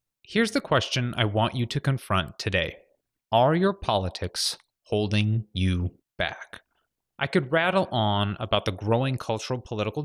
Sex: male